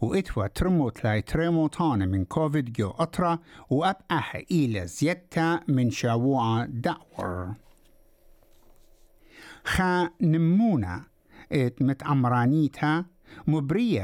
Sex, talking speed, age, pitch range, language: male, 90 wpm, 60-79, 125-170 Hz, English